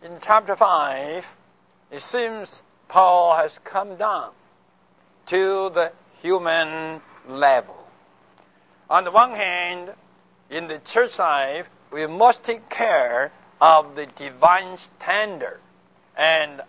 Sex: male